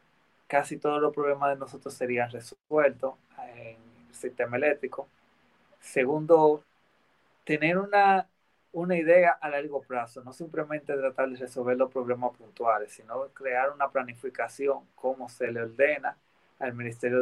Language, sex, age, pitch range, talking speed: Spanish, male, 30-49, 125-150 Hz, 130 wpm